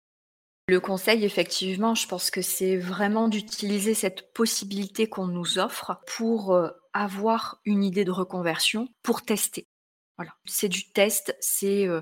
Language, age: French, 30-49